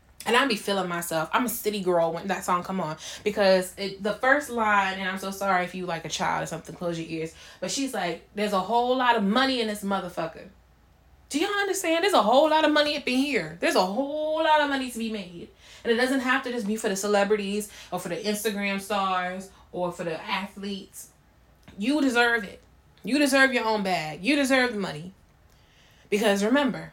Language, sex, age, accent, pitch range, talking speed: English, female, 20-39, American, 180-245 Hz, 220 wpm